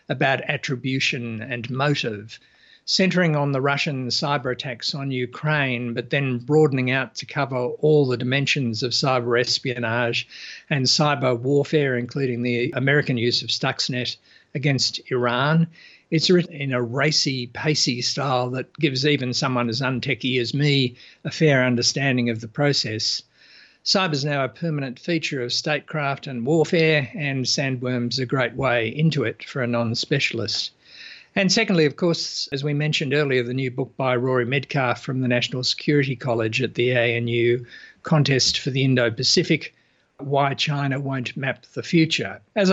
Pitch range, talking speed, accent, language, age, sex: 125-150 Hz, 155 wpm, Australian, English, 50-69, male